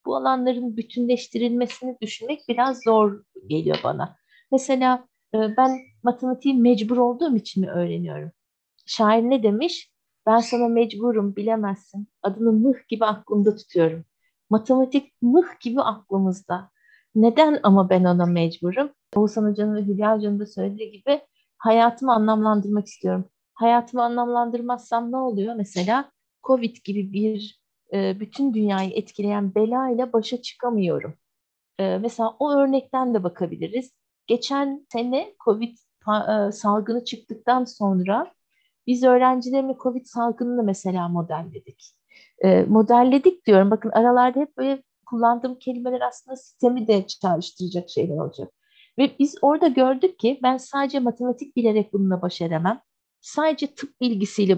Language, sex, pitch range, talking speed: Turkish, female, 205-255 Hz, 120 wpm